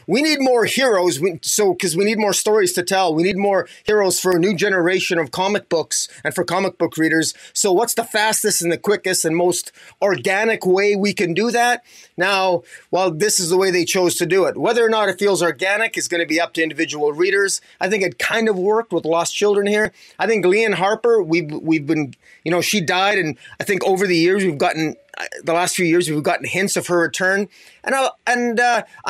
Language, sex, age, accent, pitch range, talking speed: English, male, 30-49, American, 170-210 Hz, 235 wpm